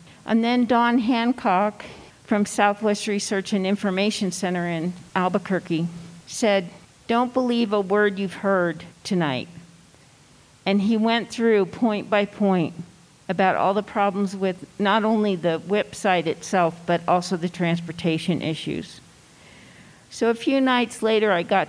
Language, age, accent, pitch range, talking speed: English, 50-69, American, 175-210 Hz, 135 wpm